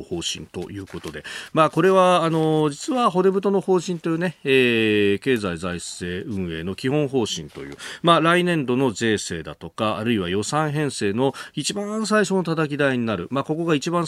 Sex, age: male, 40-59